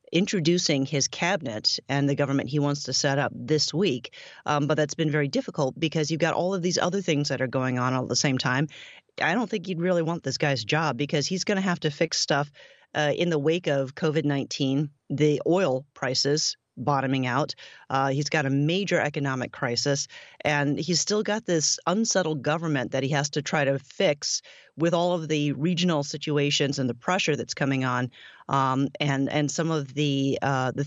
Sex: female